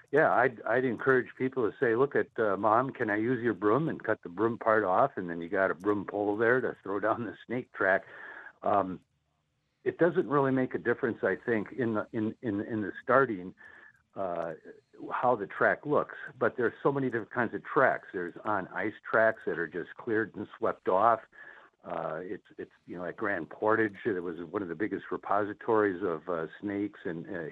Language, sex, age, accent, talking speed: English, male, 60-79, American, 210 wpm